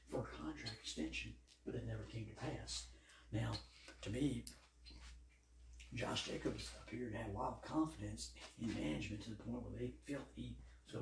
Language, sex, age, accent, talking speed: English, male, 60-79, American, 185 wpm